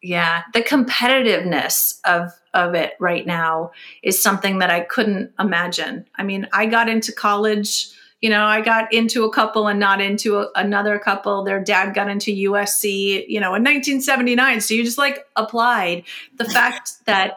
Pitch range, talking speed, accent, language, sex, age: 195-230 Hz, 170 wpm, American, English, female, 30-49